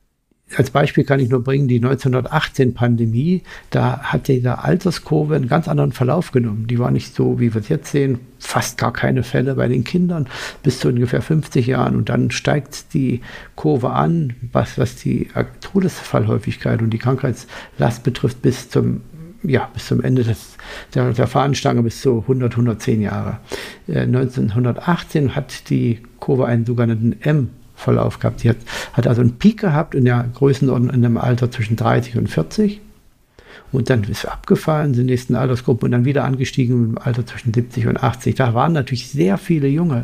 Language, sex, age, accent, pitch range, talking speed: German, male, 60-79, German, 120-140 Hz, 175 wpm